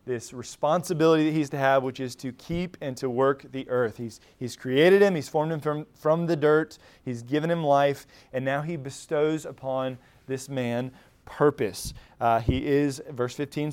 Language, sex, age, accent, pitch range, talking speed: English, male, 20-39, American, 135-165 Hz, 190 wpm